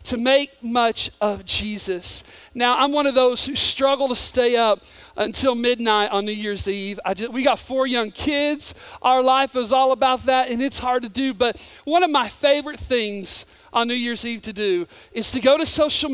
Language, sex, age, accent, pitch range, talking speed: English, male, 40-59, American, 235-305 Hz, 210 wpm